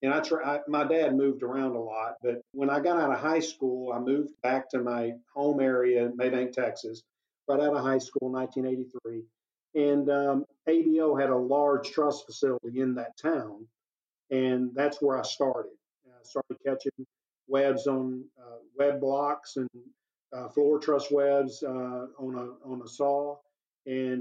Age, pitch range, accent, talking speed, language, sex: 50-69, 125-140 Hz, American, 180 wpm, English, male